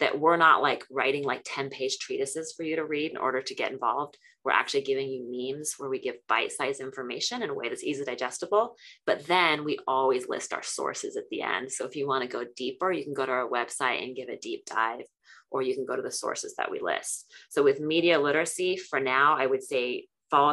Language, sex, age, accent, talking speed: English, female, 30-49, American, 235 wpm